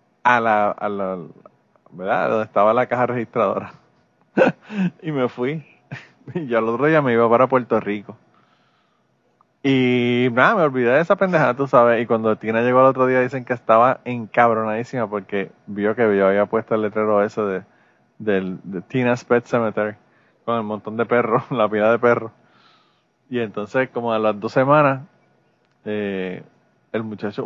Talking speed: 170 wpm